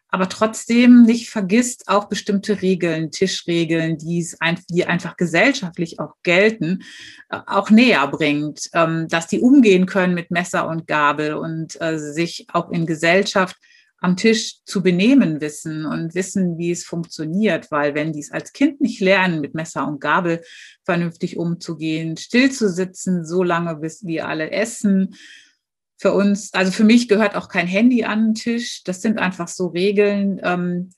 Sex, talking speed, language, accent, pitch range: female, 155 wpm, German, German, 165-200 Hz